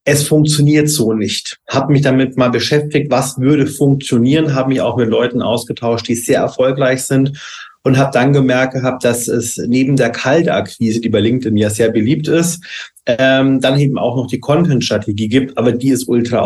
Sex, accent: male, German